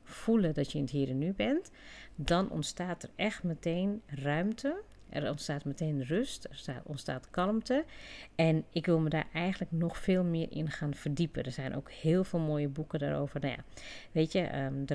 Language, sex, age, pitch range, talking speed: Dutch, female, 40-59, 145-180 Hz, 180 wpm